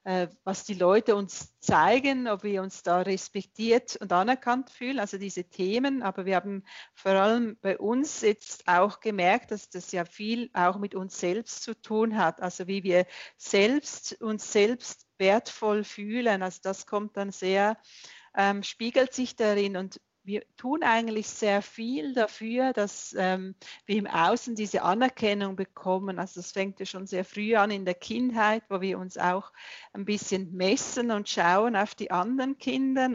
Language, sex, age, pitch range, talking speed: German, female, 40-59, 190-230 Hz, 170 wpm